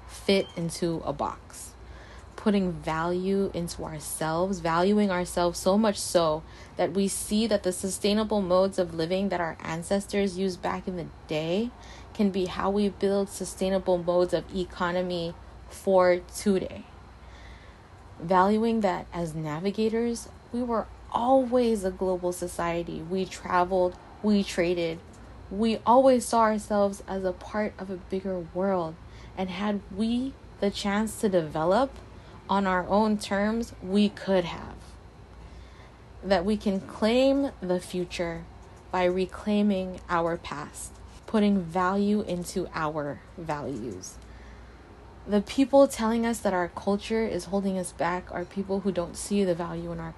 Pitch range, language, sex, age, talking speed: 175-205 Hz, English, female, 20-39, 140 wpm